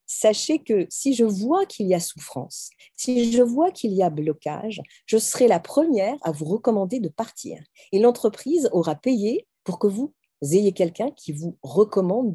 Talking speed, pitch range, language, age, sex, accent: 180 wpm, 175-255 Hz, French, 40-59, female, French